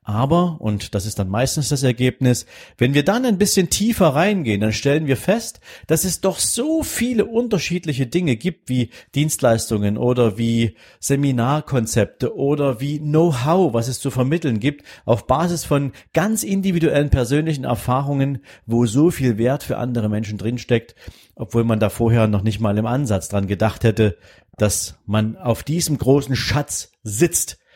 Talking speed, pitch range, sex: 160 wpm, 115-155 Hz, male